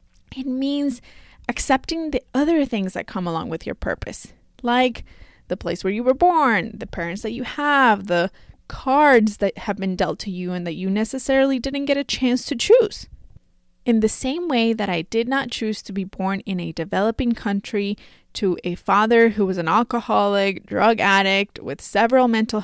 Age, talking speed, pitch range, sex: 20-39, 185 wpm, 195-255 Hz, female